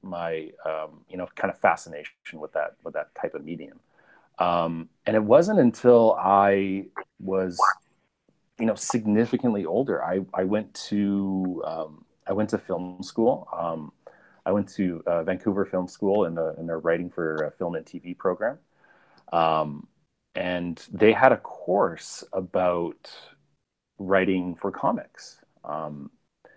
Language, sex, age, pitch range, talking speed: English, male, 30-49, 85-110 Hz, 145 wpm